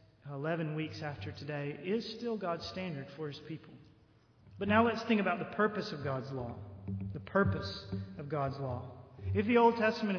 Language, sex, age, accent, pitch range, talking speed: English, male, 40-59, American, 145-205 Hz, 175 wpm